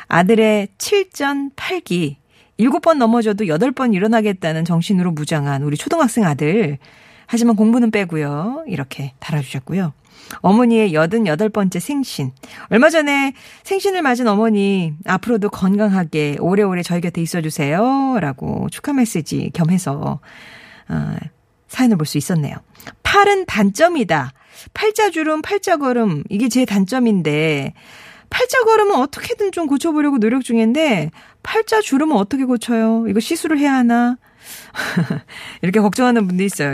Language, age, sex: Korean, 40-59, female